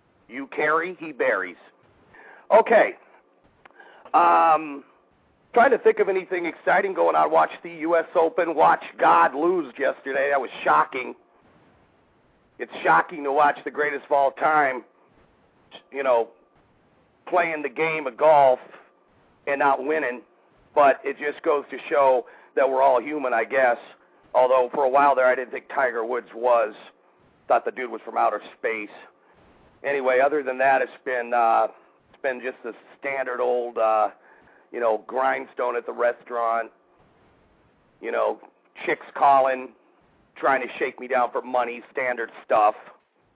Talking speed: 150 wpm